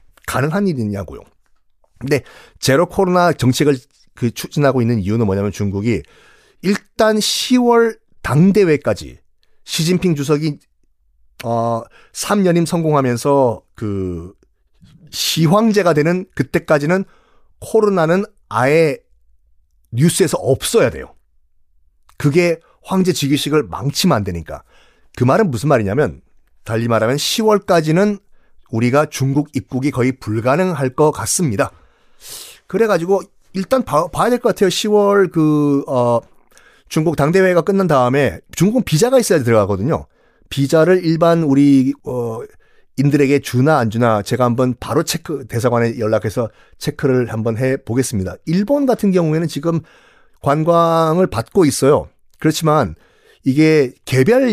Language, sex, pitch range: Korean, male, 120-175 Hz